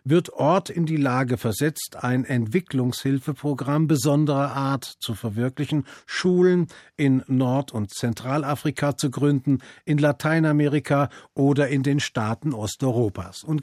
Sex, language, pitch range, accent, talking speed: male, German, 130-160 Hz, German, 120 wpm